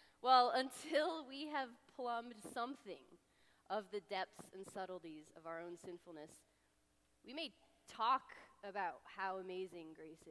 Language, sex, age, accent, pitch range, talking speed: English, female, 20-39, American, 155-210 Hz, 130 wpm